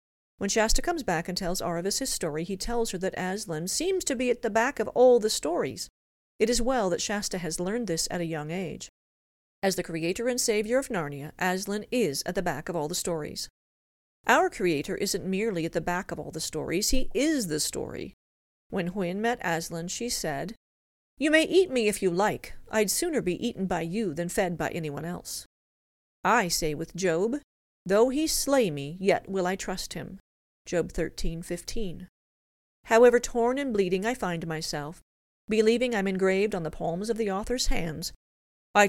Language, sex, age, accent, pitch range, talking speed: English, female, 40-59, American, 170-230 Hz, 195 wpm